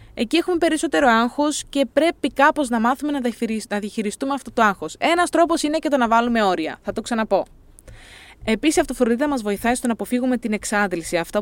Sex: female